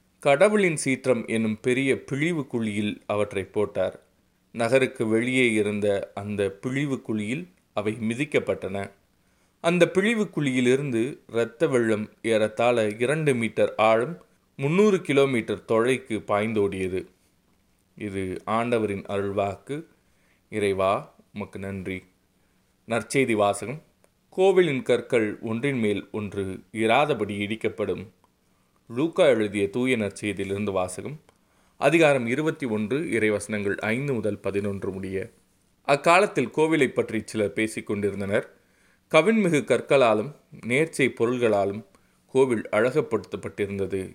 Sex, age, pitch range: male, 30-49, 100-130 Hz